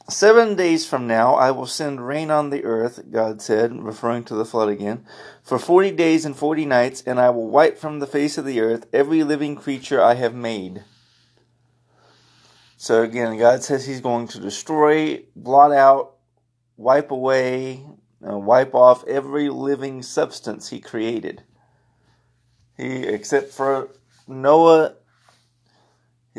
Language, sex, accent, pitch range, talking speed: English, male, American, 120-135 Hz, 145 wpm